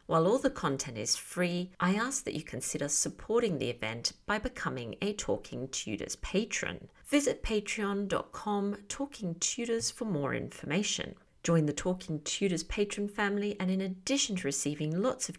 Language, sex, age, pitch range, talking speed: English, female, 40-59, 160-220 Hz, 155 wpm